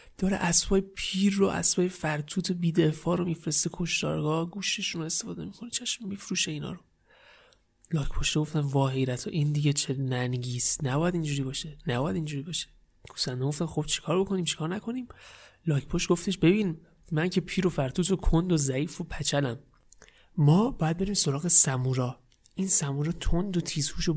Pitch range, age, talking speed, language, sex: 150-190 Hz, 30-49, 155 wpm, Persian, male